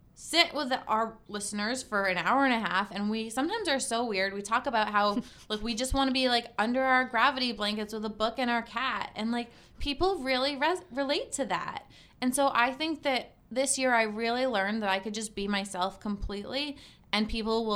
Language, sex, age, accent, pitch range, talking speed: English, female, 20-39, American, 195-255 Hz, 215 wpm